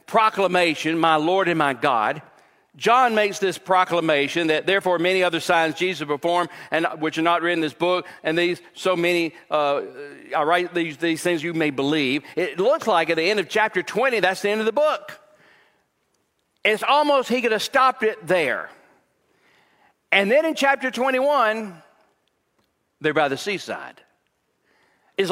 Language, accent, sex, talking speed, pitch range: English, American, male, 170 wpm, 180-265 Hz